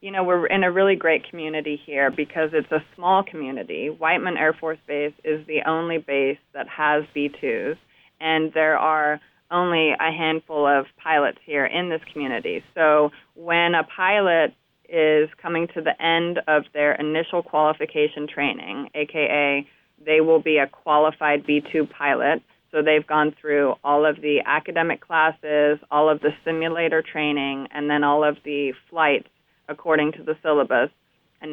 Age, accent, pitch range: 30-49, American, 145-160 Hz